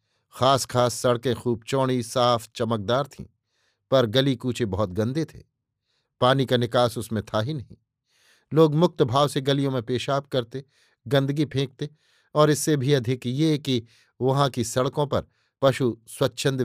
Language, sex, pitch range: Hindi, male, 115-140 Hz